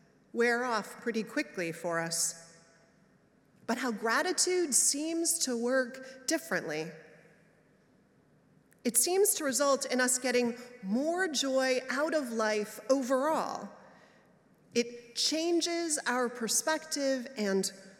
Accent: American